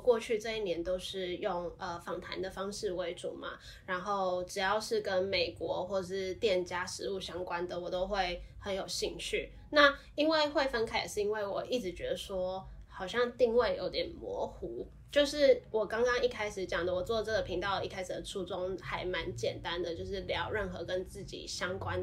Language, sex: Chinese, female